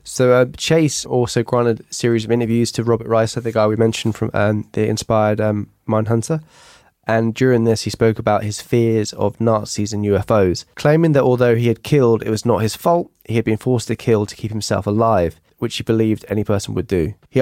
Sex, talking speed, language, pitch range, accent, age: male, 215 wpm, English, 105-120 Hz, British, 10-29